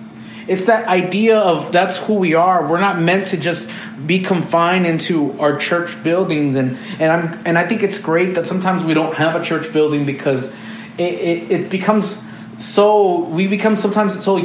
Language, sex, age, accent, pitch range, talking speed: English, male, 30-49, American, 175-220 Hz, 190 wpm